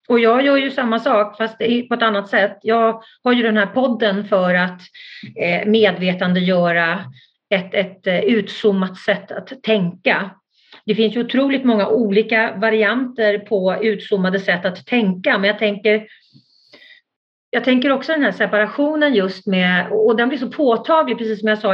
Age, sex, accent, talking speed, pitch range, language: 40-59, female, native, 160 wpm, 195-235 Hz, Swedish